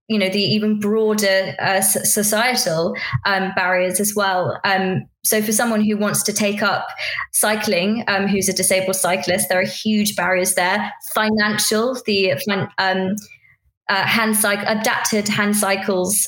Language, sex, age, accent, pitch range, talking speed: English, female, 20-39, British, 190-215 Hz, 145 wpm